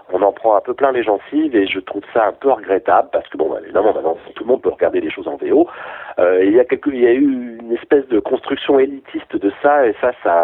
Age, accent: 40-59, French